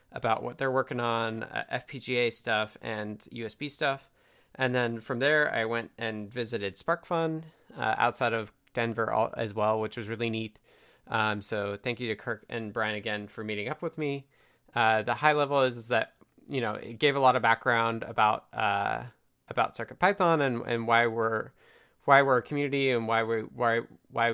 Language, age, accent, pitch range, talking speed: English, 20-39, American, 115-135 Hz, 185 wpm